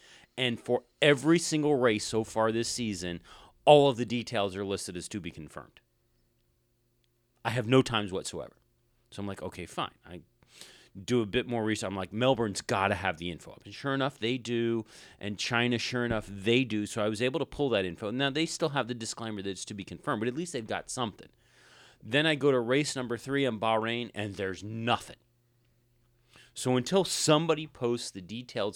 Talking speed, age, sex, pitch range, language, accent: 200 wpm, 30-49, male, 100-125 Hz, English, American